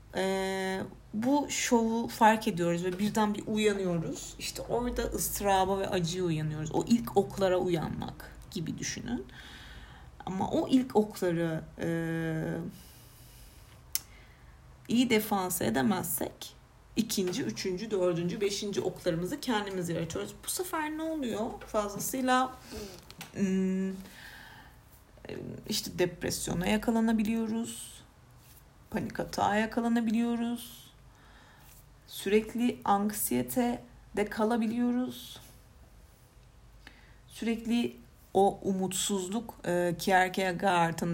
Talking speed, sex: 80 wpm, female